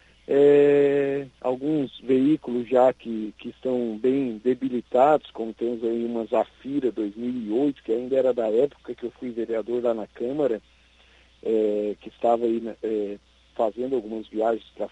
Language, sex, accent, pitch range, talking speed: Portuguese, male, Brazilian, 110-140 Hz, 135 wpm